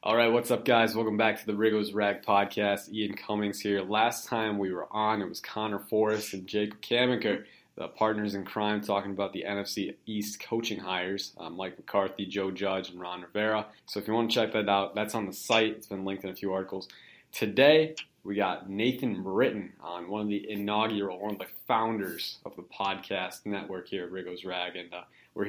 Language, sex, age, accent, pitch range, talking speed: English, male, 20-39, American, 95-110 Hz, 210 wpm